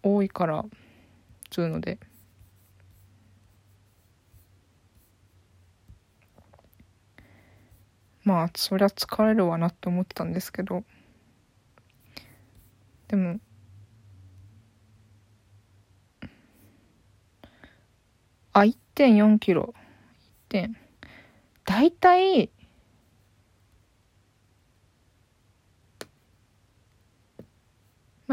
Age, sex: 20-39, female